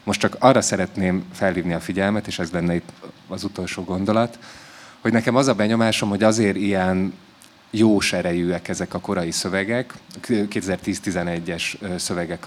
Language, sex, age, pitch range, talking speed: Hungarian, male, 30-49, 90-110 Hz, 145 wpm